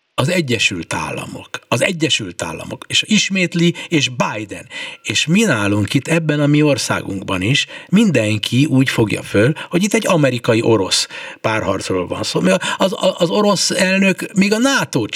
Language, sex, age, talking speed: Hungarian, male, 60-79, 155 wpm